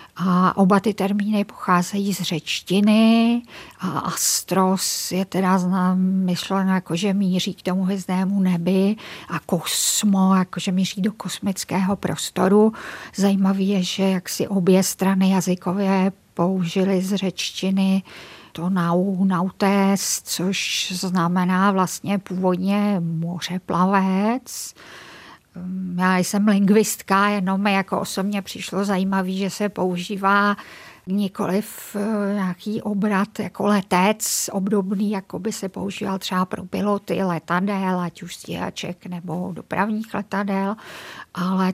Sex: female